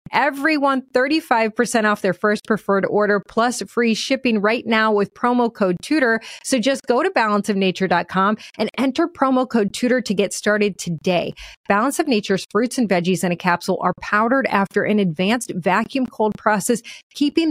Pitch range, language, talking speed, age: 190-250 Hz, English, 165 wpm, 30-49